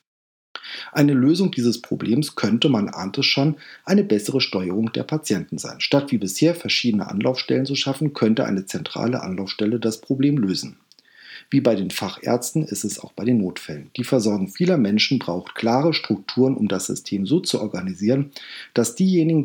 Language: German